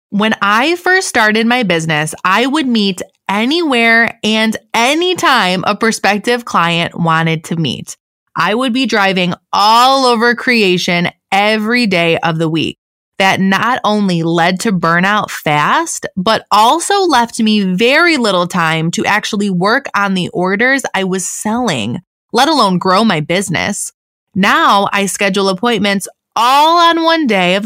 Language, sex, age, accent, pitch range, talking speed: English, female, 20-39, American, 180-240 Hz, 145 wpm